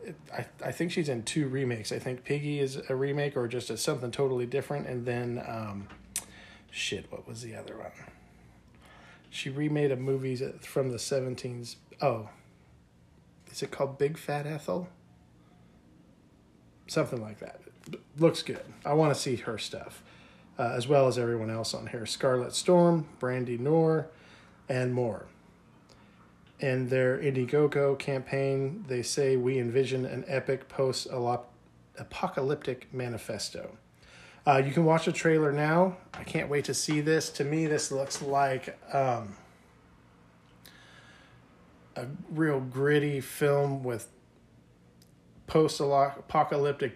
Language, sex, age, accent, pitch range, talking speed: English, male, 40-59, American, 120-145 Hz, 130 wpm